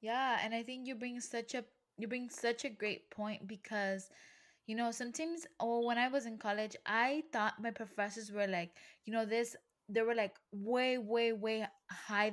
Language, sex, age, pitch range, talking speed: English, female, 10-29, 205-240 Hz, 195 wpm